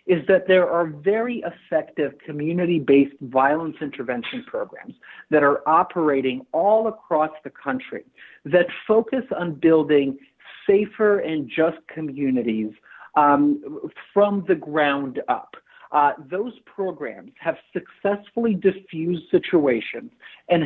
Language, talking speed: English, 110 wpm